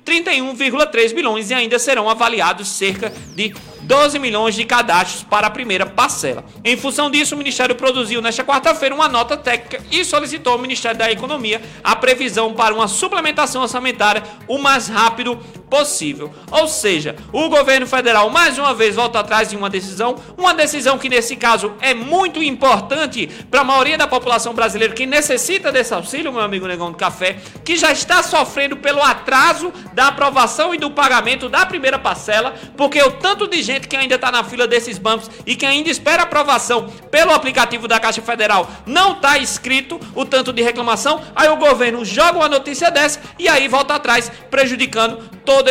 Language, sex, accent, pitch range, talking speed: Portuguese, male, Brazilian, 225-285 Hz, 175 wpm